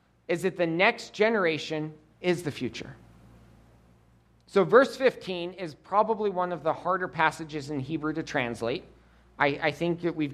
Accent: American